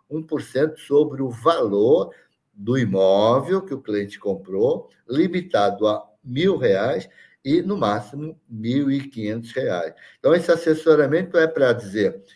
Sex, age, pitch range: male, 60-79, 120-165 Hz